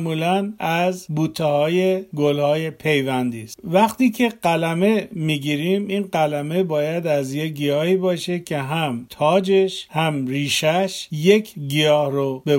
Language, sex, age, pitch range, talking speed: Persian, male, 50-69, 145-180 Hz, 130 wpm